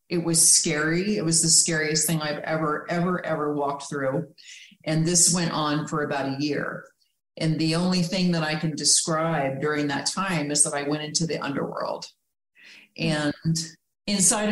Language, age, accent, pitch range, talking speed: English, 40-59, American, 150-180 Hz, 175 wpm